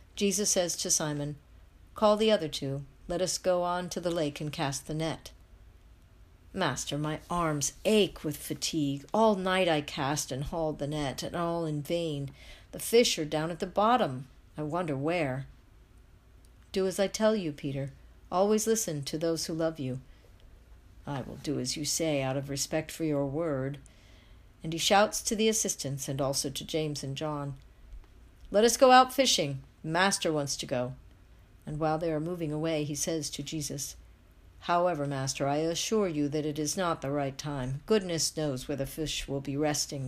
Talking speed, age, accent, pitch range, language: 185 wpm, 60-79, American, 135-170 Hz, English